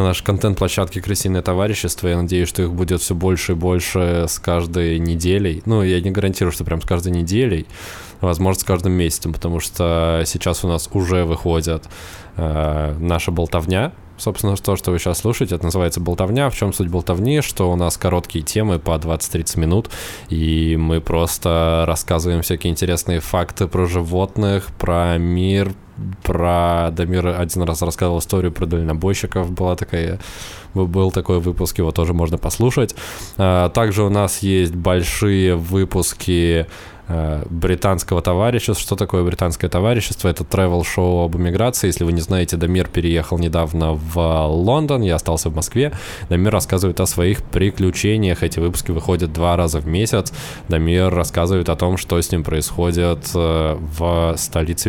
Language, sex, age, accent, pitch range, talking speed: Russian, male, 20-39, native, 85-95 Hz, 155 wpm